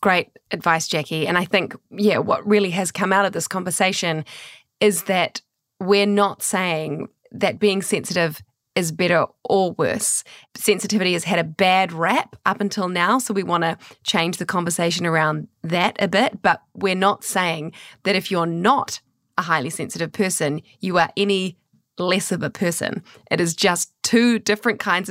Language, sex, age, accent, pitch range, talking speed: English, female, 20-39, Australian, 170-205 Hz, 170 wpm